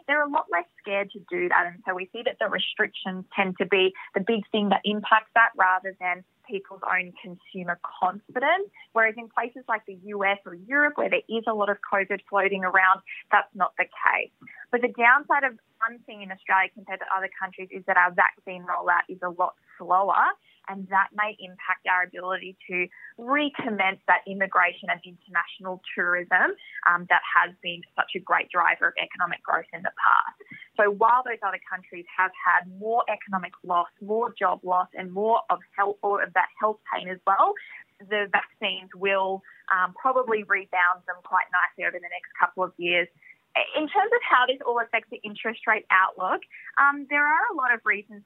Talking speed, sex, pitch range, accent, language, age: 190 wpm, female, 185-225 Hz, Australian, English, 20-39